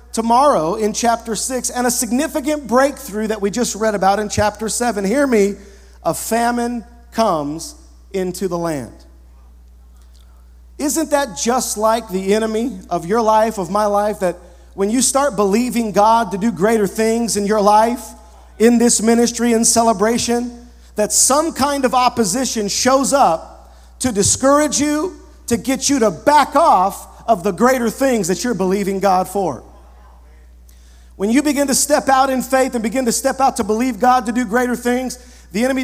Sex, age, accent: male, 40-59, American